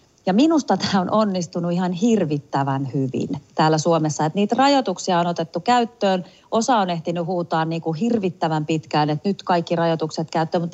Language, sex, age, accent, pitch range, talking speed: Finnish, female, 30-49, native, 145-190 Hz, 150 wpm